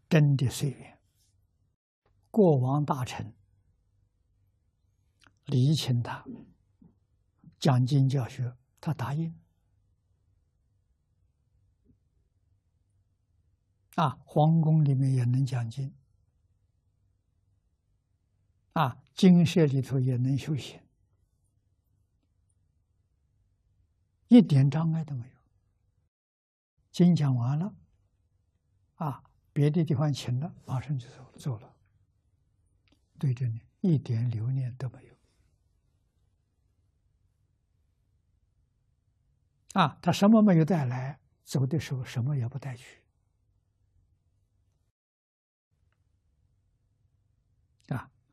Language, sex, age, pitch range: Chinese, male, 60-79, 95-130 Hz